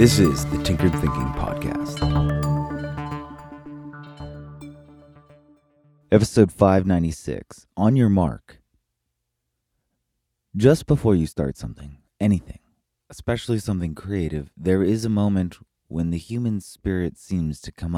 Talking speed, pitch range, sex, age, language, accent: 105 wpm, 75-100 Hz, male, 30-49, English, American